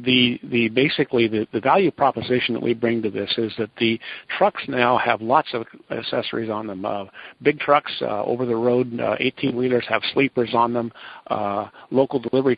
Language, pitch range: English, 115-130 Hz